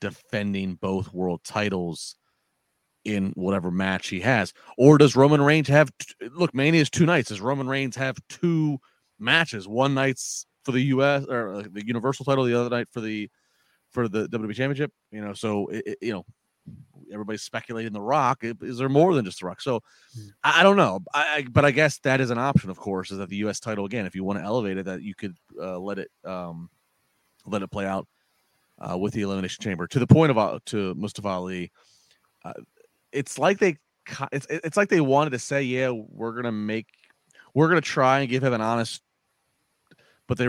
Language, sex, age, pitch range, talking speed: English, male, 30-49, 100-135 Hz, 210 wpm